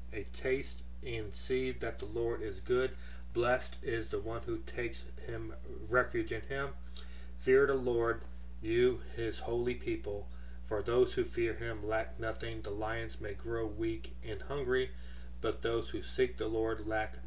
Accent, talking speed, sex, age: American, 165 wpm, male, 30-49